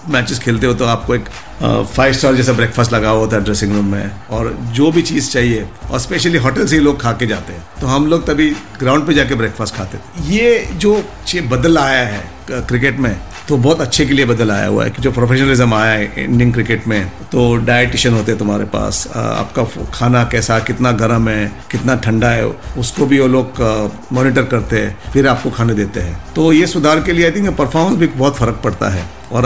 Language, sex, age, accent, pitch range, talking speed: Hindi, male, 50-69, native, 110-135 Hz, 220 wpm